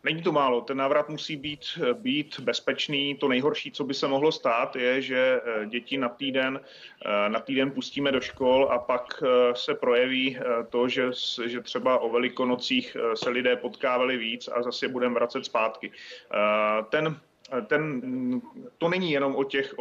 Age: 30-49